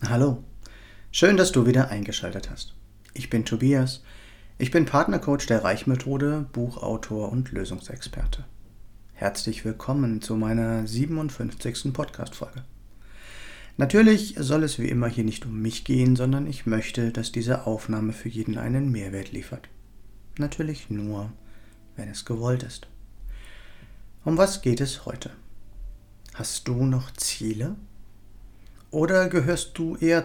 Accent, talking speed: German, 130 wpm